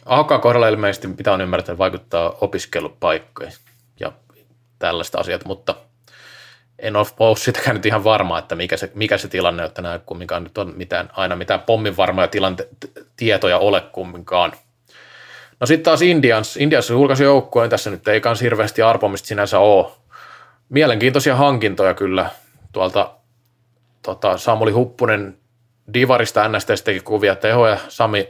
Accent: native